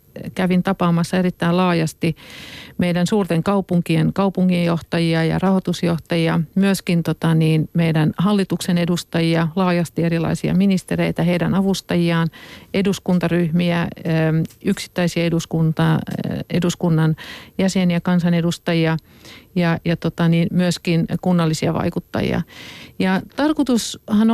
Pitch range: 165-190 Hz